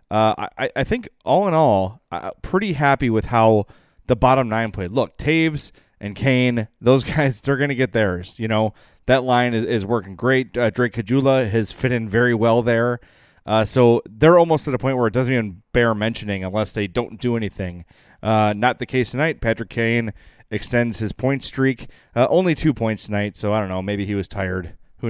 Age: 30-49